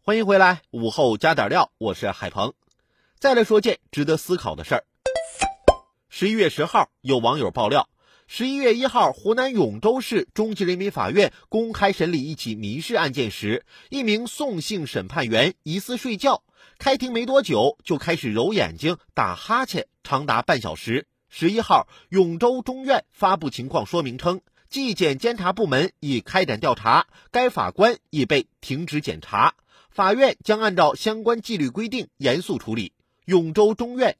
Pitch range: 165-235 Hz